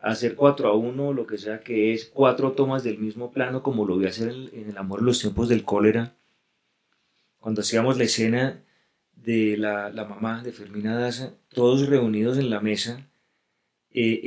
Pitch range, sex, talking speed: 110-130 Hz, male, 180 wpm